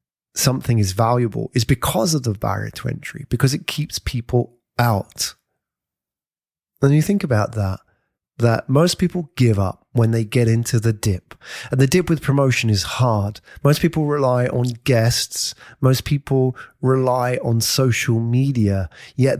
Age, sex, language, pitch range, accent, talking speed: 30-49, male, English, 115-145 Hz, British, 155 wpm